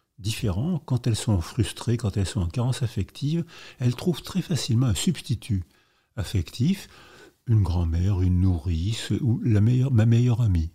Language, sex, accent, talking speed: French, male, French, 155 wpm